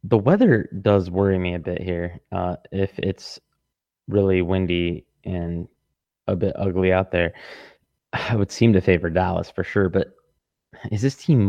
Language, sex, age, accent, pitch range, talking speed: English, male, 20-39, American, 90-105 Hz, 160 wpm